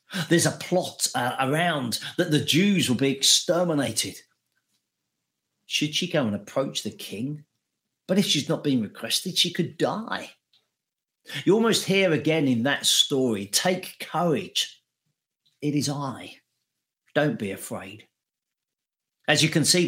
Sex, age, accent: male, 40-59, British